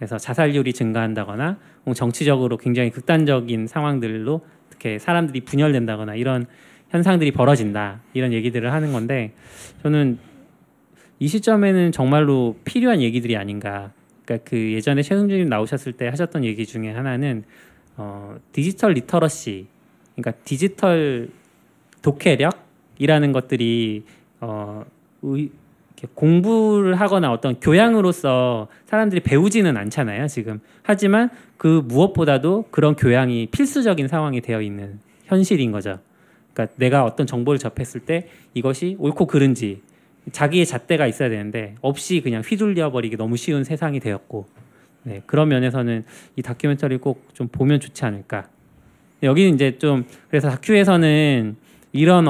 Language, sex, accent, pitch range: Korean, male, native, 115-160 Hz